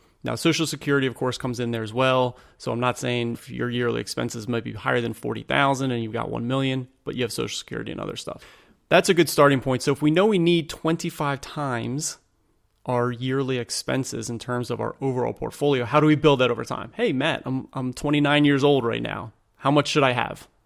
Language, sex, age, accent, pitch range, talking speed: English, male, 30-49, American, 115-145 Hz, 230 wpm